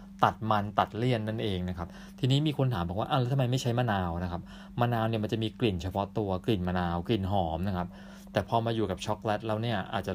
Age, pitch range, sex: 20-39, 95-125 Hz, male